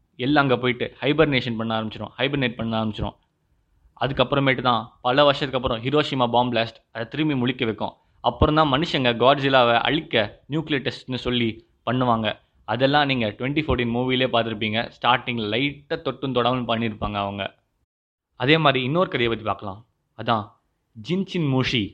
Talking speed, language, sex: 135 wpm, Tamil, male